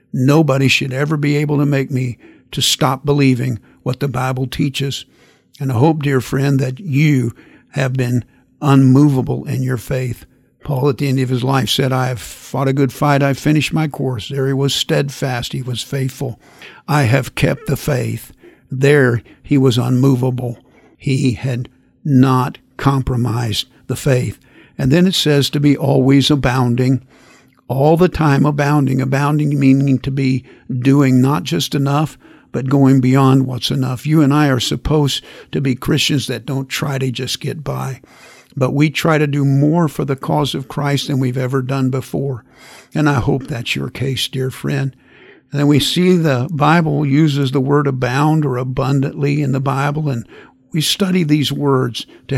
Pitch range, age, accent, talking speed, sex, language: 130-145 Hz, 60-79, American, 175 wpm, male, English